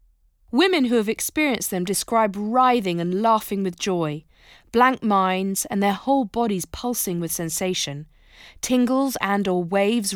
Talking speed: 140 wpm